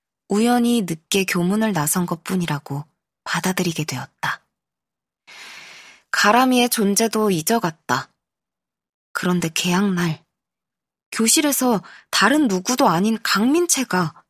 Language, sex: Korean, female